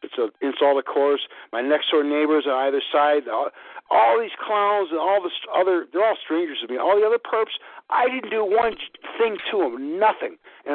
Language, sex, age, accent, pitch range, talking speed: English, male, 60-79, American, 145-205 Hz, 210 wpm